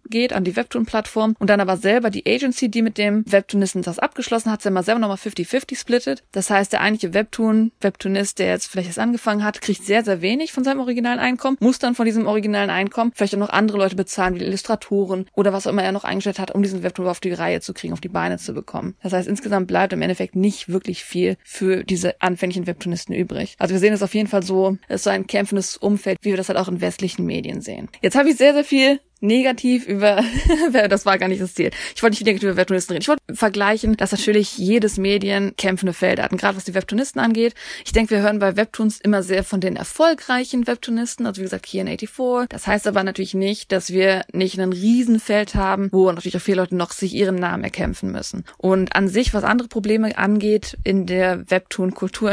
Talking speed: 230 wpm